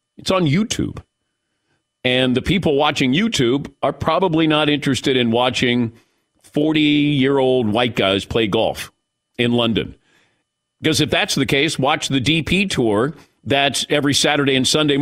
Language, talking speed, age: English, 150 wpm, 50-69